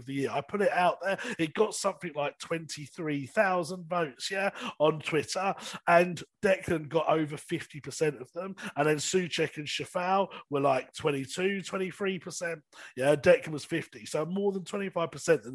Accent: British